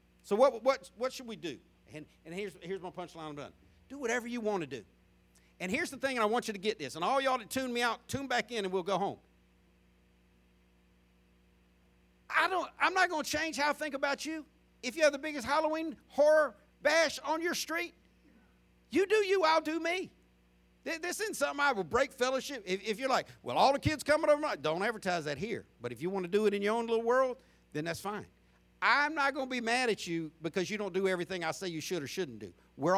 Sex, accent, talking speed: male, American, 240 wpm